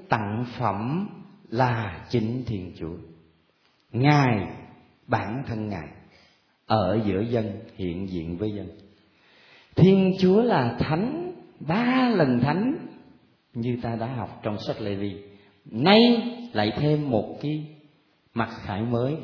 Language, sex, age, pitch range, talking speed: Vietnamese, male, 40-59, 105-180 Hz, 120 wpm